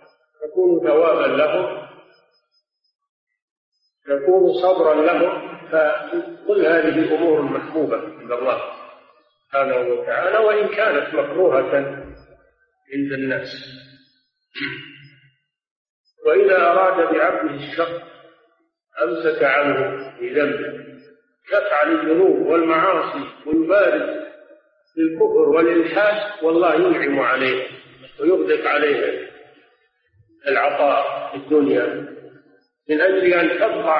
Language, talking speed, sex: Arabic, 80 wpm, male